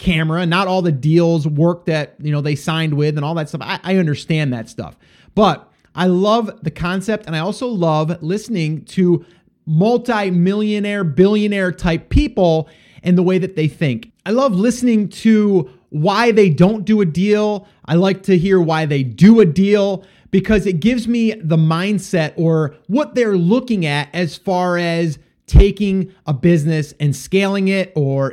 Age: 30-49